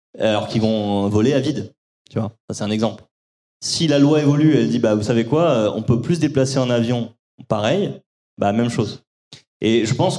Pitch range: 115-145 Hz